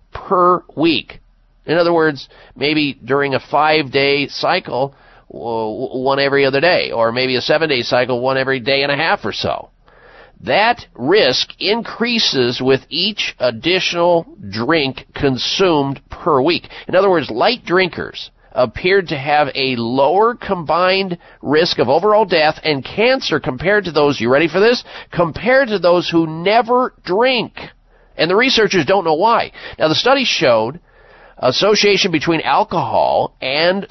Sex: male